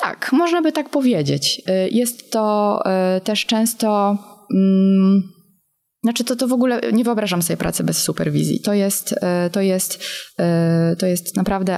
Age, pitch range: 20-39, 165-210 Hz